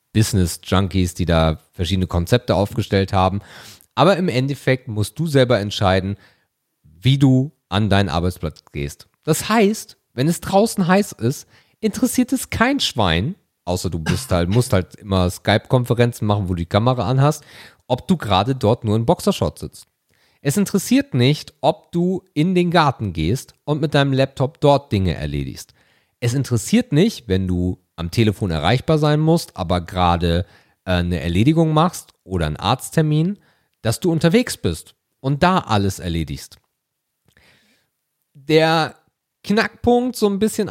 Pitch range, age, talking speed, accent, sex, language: 100-155 Hz, 40-59, 145 wpm, German, male, German